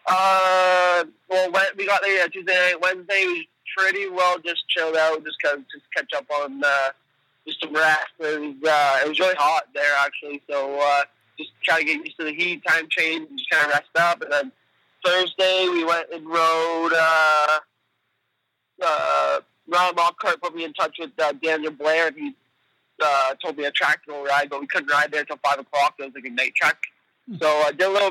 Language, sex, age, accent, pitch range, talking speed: English, male, 20-39, American, 145-175 Hz, 210 wpm